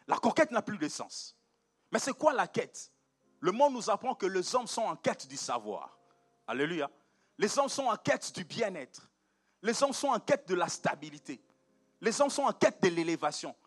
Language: French